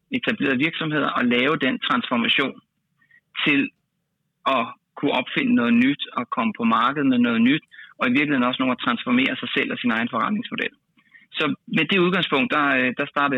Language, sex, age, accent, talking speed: Danish, male, 30-49, native, 175 wpm